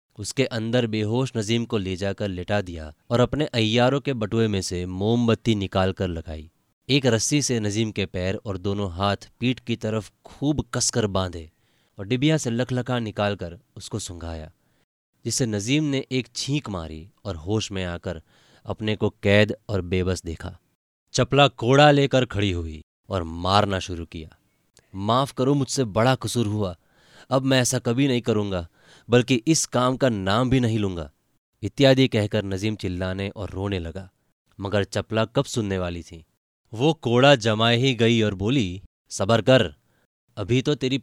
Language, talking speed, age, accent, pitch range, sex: Hindi, 160 wpm, 20-39, native, 100-130 Hz, male